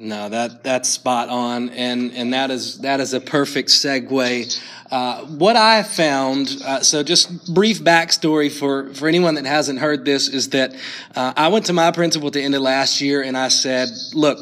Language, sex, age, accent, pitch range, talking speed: English, male, 30-49, American, 135-175 Hz, 200 wpm